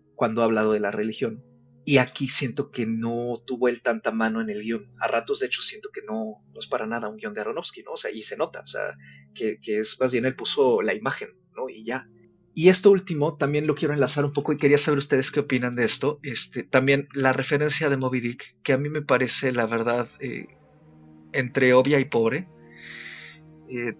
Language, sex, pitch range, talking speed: Spanish, male, 110-135 Hz, 225 wpm